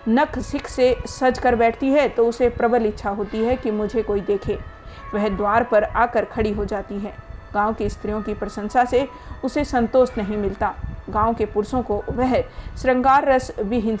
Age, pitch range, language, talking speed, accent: 50-69, 210-250 Hz, Hindi, 185 wpm, native